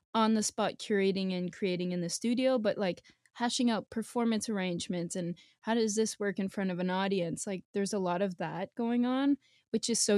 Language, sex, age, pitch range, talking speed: English, female, 20-39, 185-220 Hz, 210 wpm